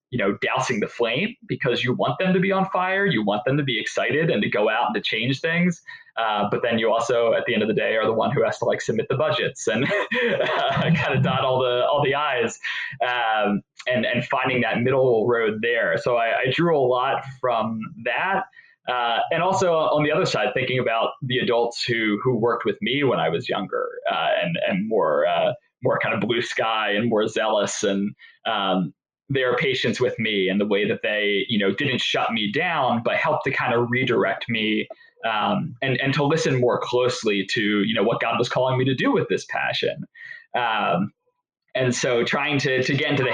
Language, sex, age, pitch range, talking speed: English, male, 20-39, 120-185 Hz, 220 wpm